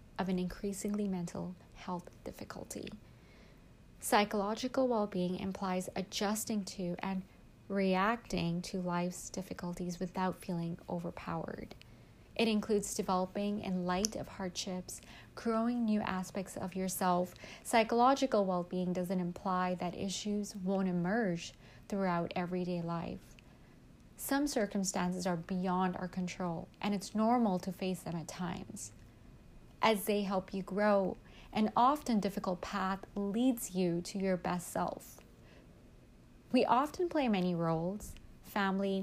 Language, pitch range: English, 180-210 Hz